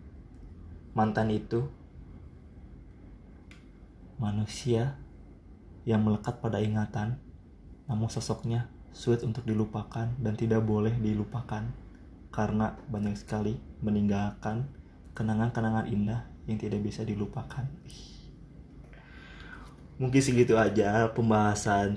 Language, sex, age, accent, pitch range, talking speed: Indonesian, male, 20-39, native, 100-115 Hz, 80 wpm